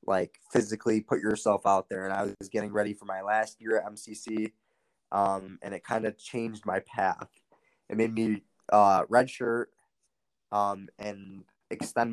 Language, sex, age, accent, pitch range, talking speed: English, male, 20-39, American, 100-115 Hz, 170 wpm